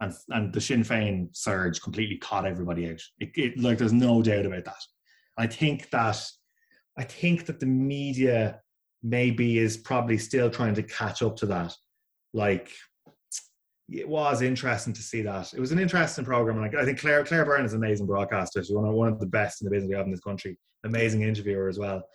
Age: 20-39